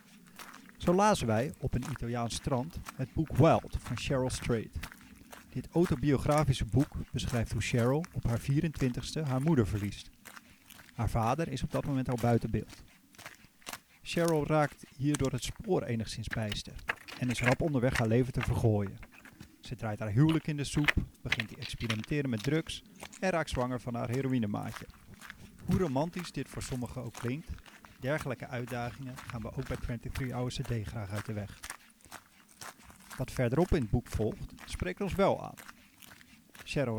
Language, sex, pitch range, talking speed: Dutch, male, 115-150 Hz, 160 wpm